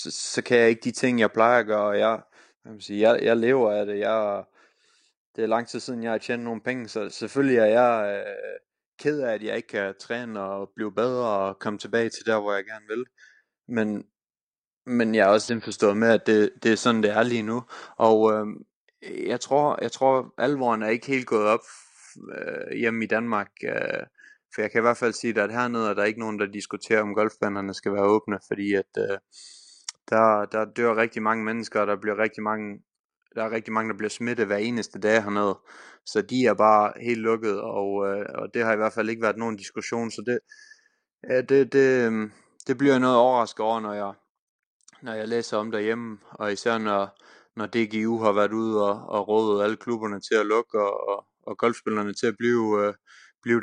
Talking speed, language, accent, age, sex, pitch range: 215 wpm, Danish, native, 20-39, male, 105-120 Hz